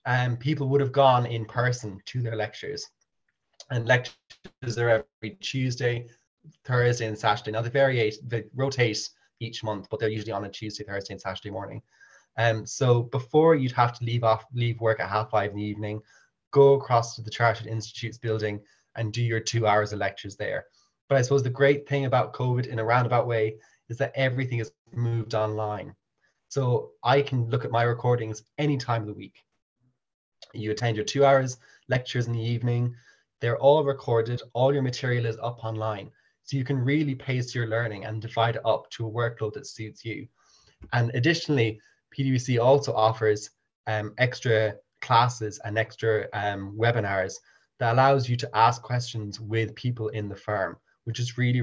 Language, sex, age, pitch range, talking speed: English, male, 20-39, 110-125 Hz, 185 wpm